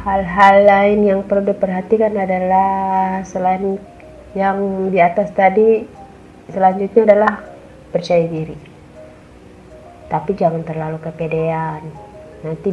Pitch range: 155-195 Hz